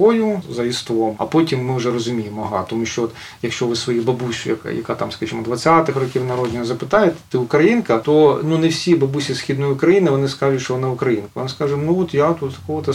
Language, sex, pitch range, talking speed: Ukrainian, male, 125-150 Hz, 200 wpm